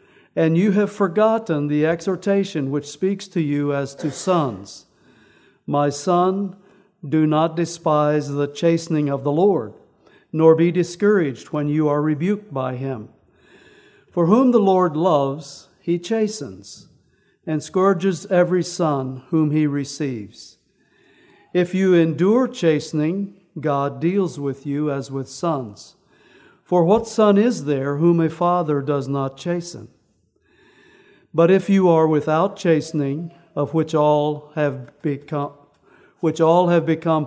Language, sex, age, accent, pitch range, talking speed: English, male, 60-79, American, 145-185 Hz, 135 wpm